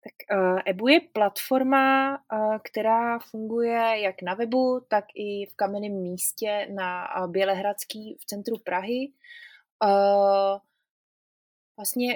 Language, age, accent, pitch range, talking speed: Czech, 20-39, native, 195-235 Hz, 100 wpm